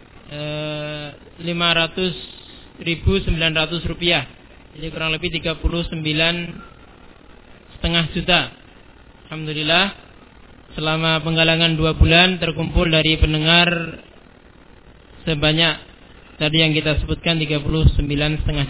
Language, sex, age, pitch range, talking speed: Malay, male, 20-39, 145-170 Hz, 70 wpm